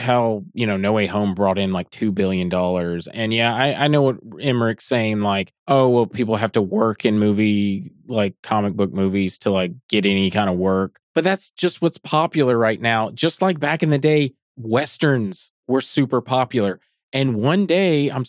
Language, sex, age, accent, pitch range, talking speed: English, male, 20-39, American, 110-155 Hz, 200 wpm